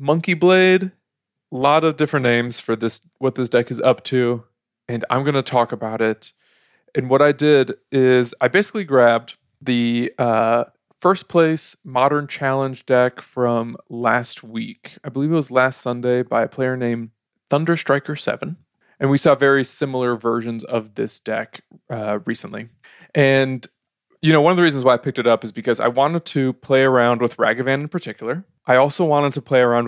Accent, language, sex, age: American, English, male, 20-39